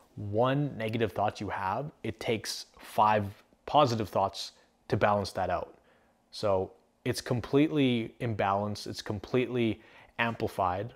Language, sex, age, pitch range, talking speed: English, male, 20-39, 100-125 Hz, 115 wpm